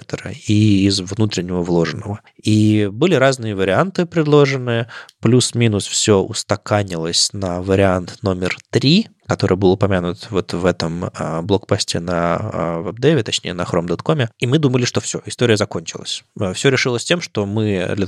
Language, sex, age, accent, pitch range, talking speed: Russian, male, 20-39, native, 95-115 Hz, 135 wpm